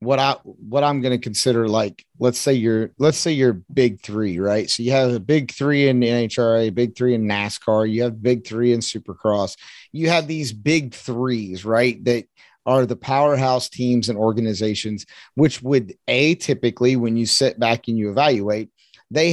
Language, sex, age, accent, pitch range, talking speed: English, male, 30-49, American, 110-140 Hz, 185 wpm